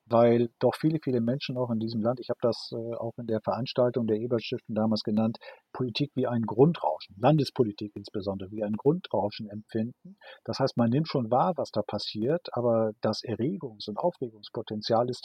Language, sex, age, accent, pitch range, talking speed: German, male, 50-69, German, 110-135 Hz, 175 wpm